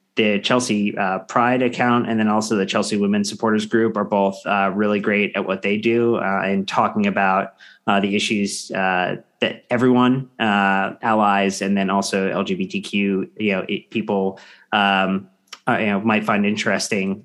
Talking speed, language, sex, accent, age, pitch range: 170 wpm, English, male, American, 30-49, 100-125 Hz